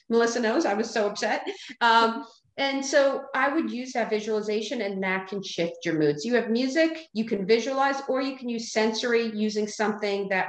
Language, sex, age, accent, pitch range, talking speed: English, female, 40-59, American, 220-295 Hz, 200 wpm